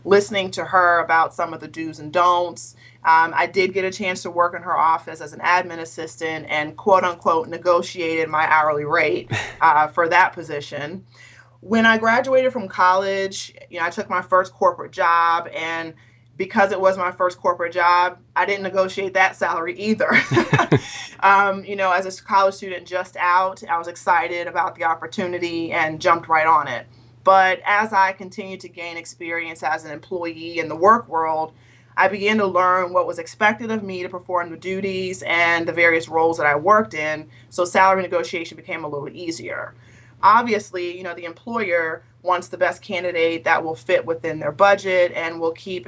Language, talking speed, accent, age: English, 185 wpm, American, 30-49